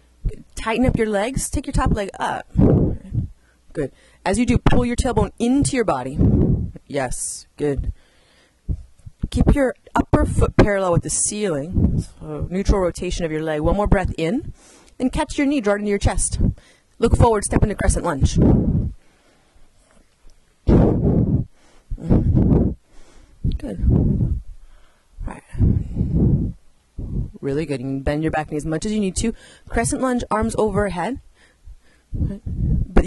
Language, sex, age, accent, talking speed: English, female, 30-49, American, 140 wpm